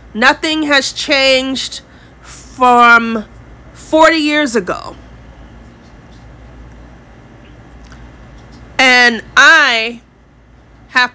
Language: English